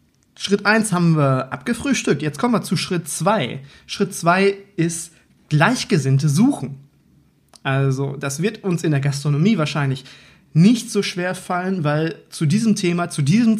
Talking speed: 150 wpm